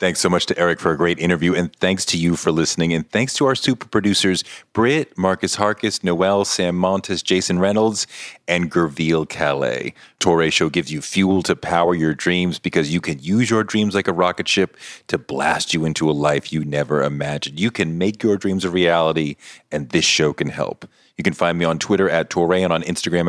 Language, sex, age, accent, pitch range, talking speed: English, male, 40-59, American, 80-95 Hz, 215 wpm